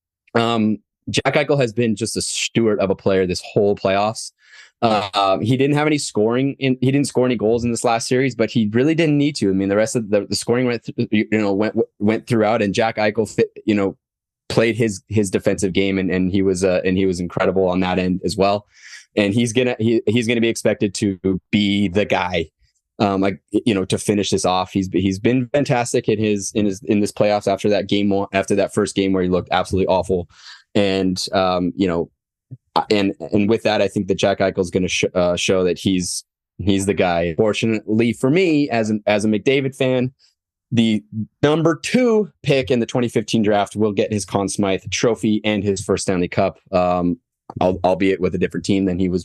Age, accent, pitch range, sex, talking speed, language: 20-39, American, 95-115 Hz, male, 220 wpm, English